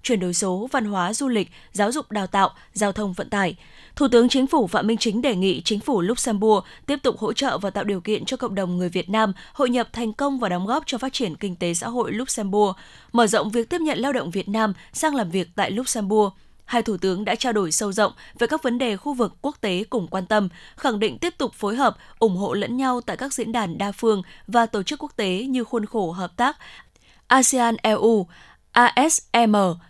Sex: female